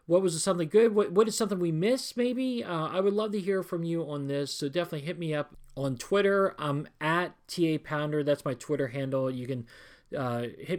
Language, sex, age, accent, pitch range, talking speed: English, male, 40-59, American, 145-195 Hz, 215 wpm